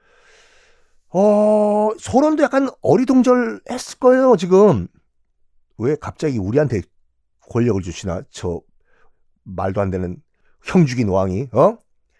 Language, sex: Korean, male